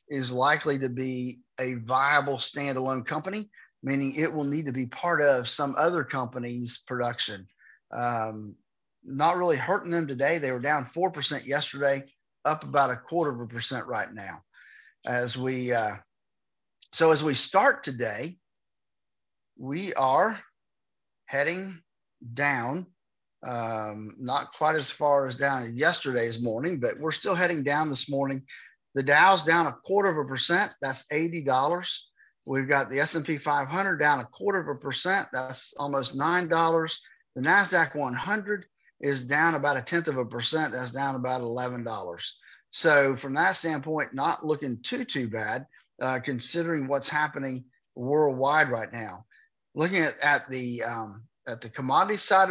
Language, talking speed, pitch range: English, 145 wpm, 130-165 Hz